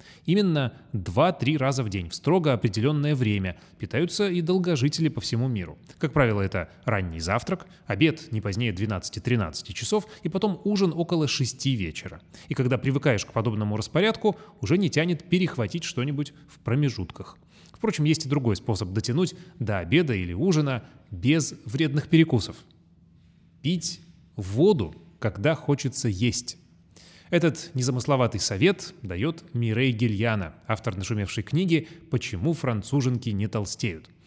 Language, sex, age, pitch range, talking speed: Russian, male, 30-49, 110-165 Hz, 130 wpm